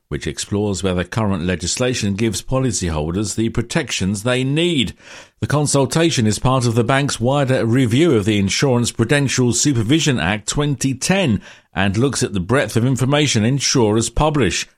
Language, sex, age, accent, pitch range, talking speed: English, male, 50-69, British, 100-135 Hz, 145 wpm